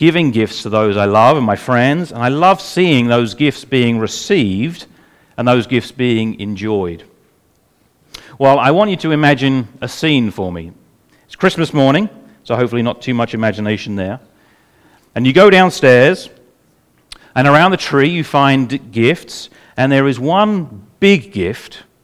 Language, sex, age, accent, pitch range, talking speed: English, male, 40-59, British, 115-160 Hz, 160 wpm